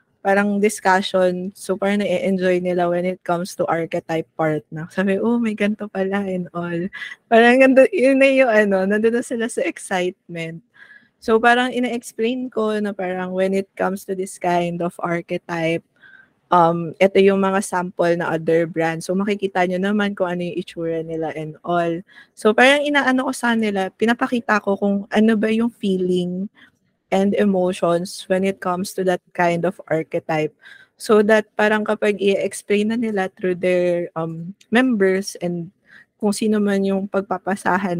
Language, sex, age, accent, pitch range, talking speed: Filipino, female, 20-39, native, 175-220 Hz, 165 wpm